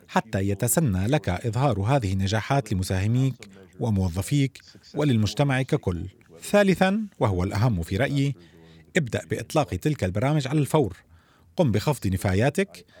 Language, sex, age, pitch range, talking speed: Arabic, male, 40-59, 105-155 Hz, 110 wpm